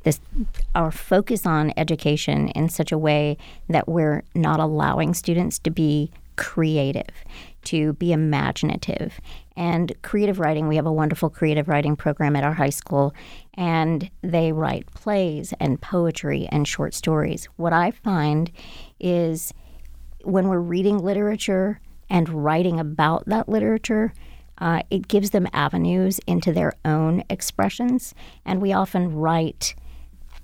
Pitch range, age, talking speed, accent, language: 150-175 Hz, 50-69, 135 wpm, American, English